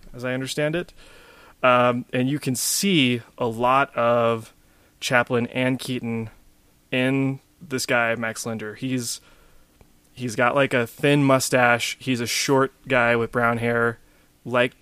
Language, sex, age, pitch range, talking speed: English, male, 20-39, 115-135 Hz, 140 wpm